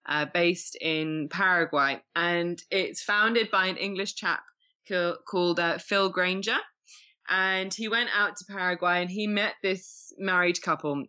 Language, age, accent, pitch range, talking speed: English, 20-39, British, 145-175 Hz, 145 wpm